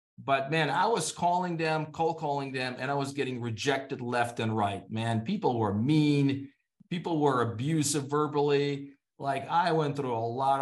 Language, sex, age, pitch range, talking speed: English, male, 30-49, 130-155 Hz, 175 wpm